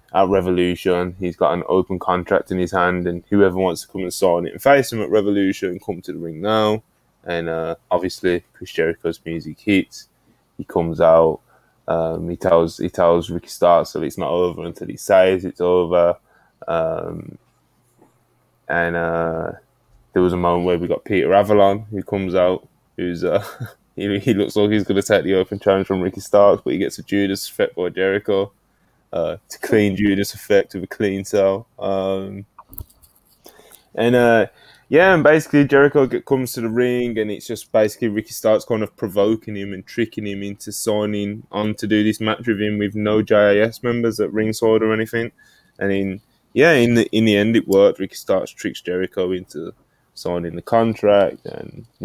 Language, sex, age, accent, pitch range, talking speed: English, male, 10-29, British, 90-110 Hz, 190 wpm